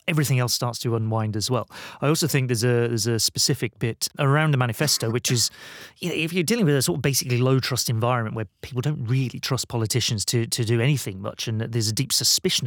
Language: English